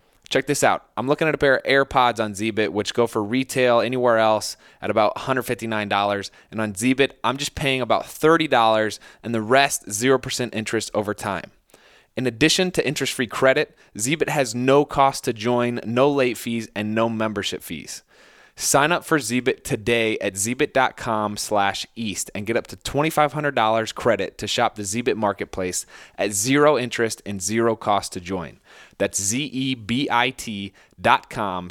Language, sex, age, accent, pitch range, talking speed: English, male, 20-39, American, 105-130 Hz, 155 wpm